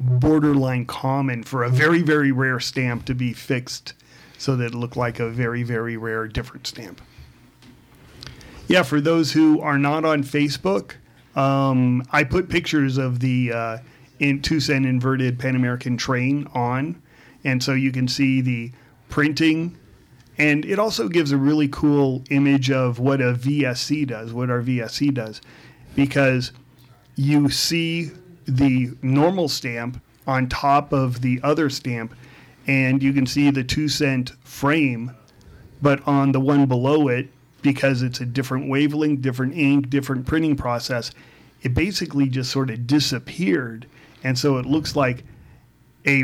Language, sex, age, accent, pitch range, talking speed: English, male, 40-59, American, 125-145 Hz, 150 wpm